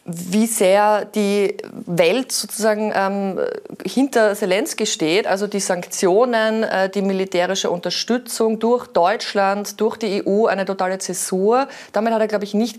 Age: 30-49